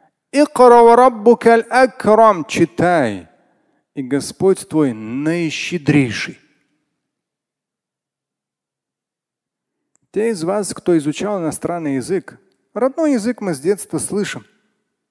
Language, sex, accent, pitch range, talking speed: Russian, male, native, 120-190 Hz, 70 wpm